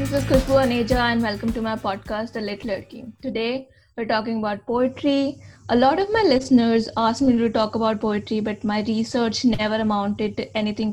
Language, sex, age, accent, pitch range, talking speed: English, female, 20-39, Indian, 200-245 Hz, 185 wpm